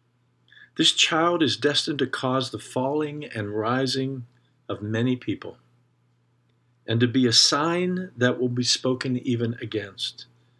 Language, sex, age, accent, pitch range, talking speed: English, male, 50-69, American, 120-140 Hz, 135 wpm